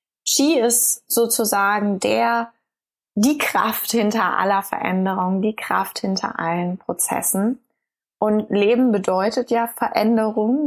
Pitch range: 200-235 Hz